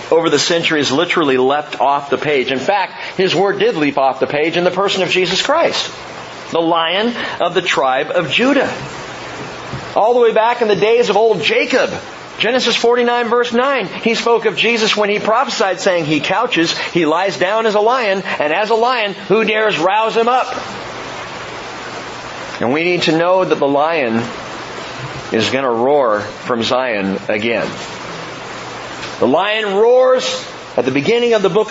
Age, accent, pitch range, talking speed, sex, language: 40-59, American, 150-230 Hz, 175 wpm, male, English